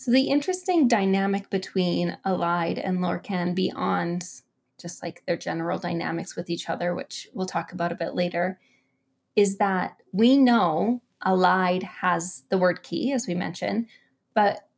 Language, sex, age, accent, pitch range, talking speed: English, female, 20-39, American, 180-230 Hz, 150 wpm